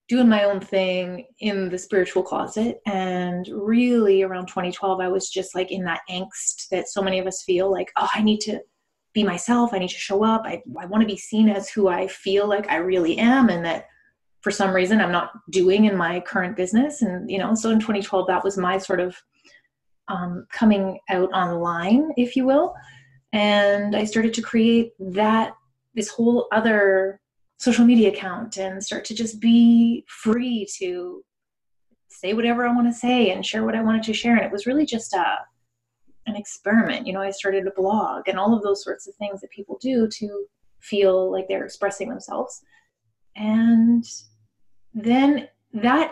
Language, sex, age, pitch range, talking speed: English, female, 20-39, 190-225 Hz, 190 wpm